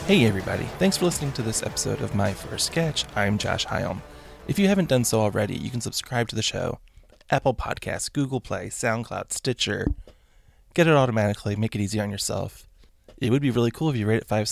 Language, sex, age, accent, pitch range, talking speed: English, male, 20-39, American, 105-130 Hz, 210 wpm